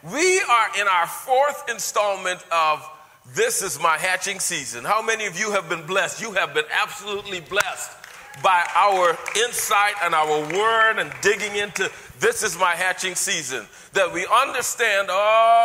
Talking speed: 160 wpm